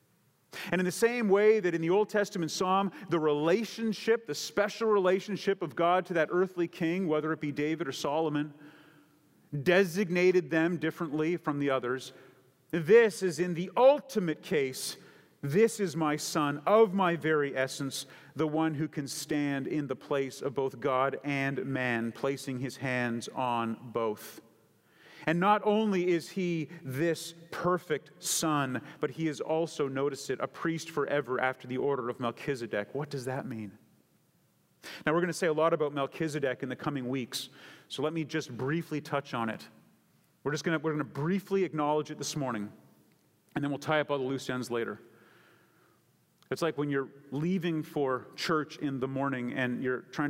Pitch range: 135-170 Hz